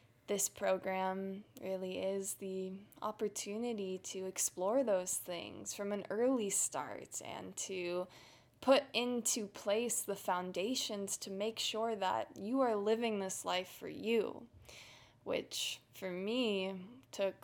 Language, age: English, 10-29